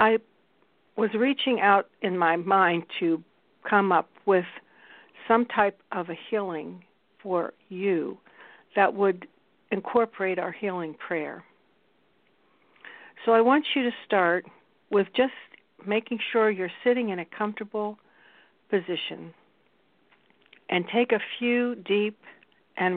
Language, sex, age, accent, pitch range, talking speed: English, female, 60-79, American, 180-235 Hz, 120 wpm